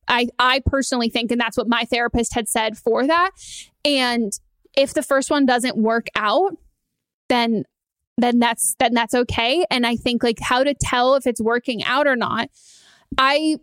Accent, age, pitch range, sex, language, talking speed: American, 20-39, 240-275 Hz, female, English, 180 wpm